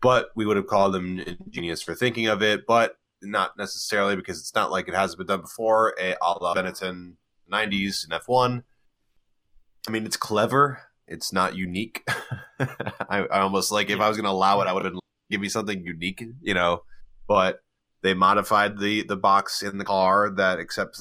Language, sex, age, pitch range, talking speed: English, male, 20-39, 90-105 Hz, 195 wpm